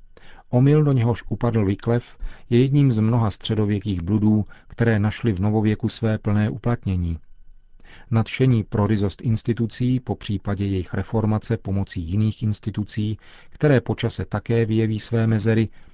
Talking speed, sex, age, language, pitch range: 130 wpm, male, 40-59, Czech, 100-120 Hz